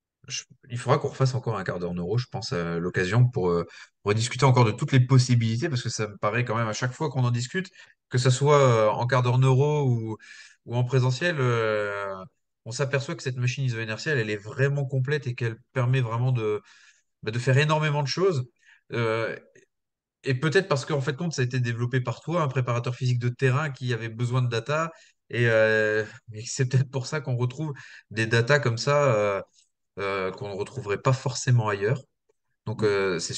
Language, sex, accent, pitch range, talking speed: French, male, French, 110-140 Hz, 205 wpm